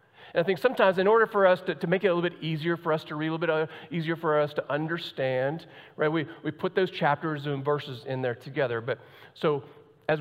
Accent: American